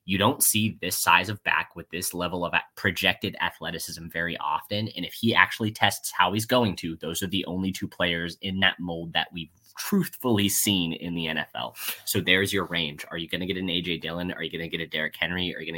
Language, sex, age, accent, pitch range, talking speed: English, male, 20-39, American, 85-110 Hz, 240 wpm